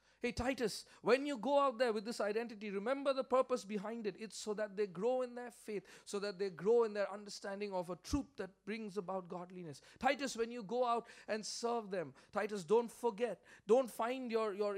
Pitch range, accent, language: 175-225 Hz, Indian, English